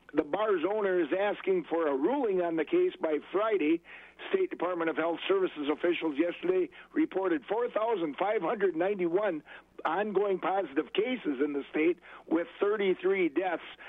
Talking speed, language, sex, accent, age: 135 wpm, English, male, American, 60-79